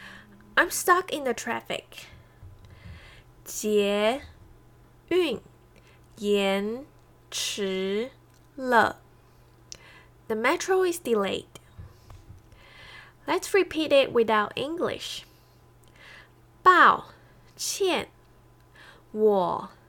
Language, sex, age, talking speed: English, female, 10-29, 55 wpm